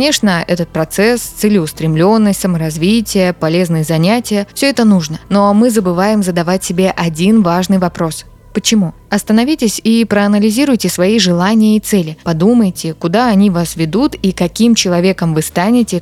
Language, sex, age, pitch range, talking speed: Russian, female, 20-39, 175-215 Hz, 135 wpm